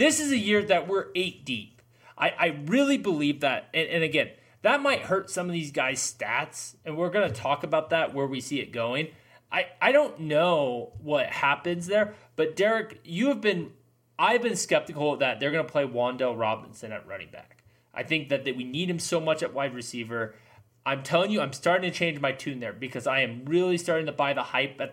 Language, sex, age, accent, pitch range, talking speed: English, male, 30-49, American, 130-195 Hz, 225 wpm